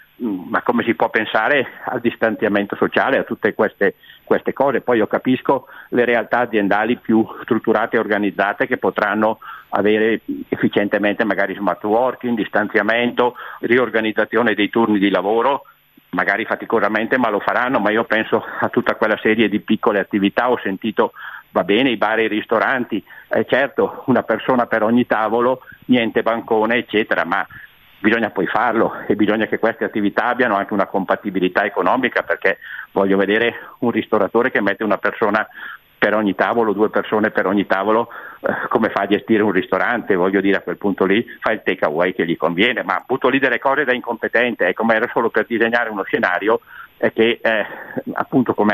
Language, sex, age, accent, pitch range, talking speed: Italian, male, 50-69, native, 100-120 Hz, 170 wpm